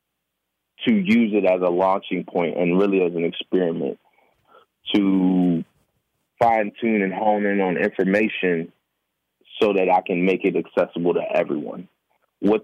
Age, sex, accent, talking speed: 20-39, male, American, 140 wpm